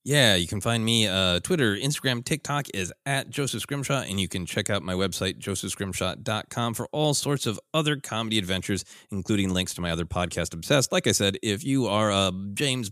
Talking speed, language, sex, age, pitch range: 200 wpm, English, male, 30-49, 95-125 Hz